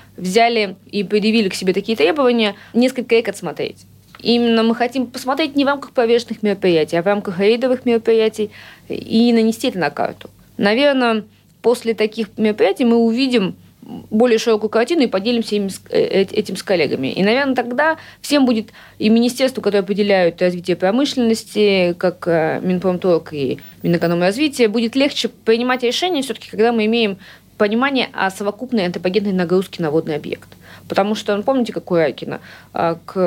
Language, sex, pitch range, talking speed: Russian, female, 190-240 Hz, 150 wpm